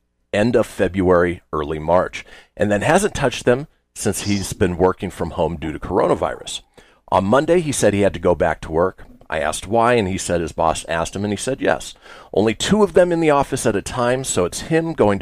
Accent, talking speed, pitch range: American, 230 wpm, 90-130 Hz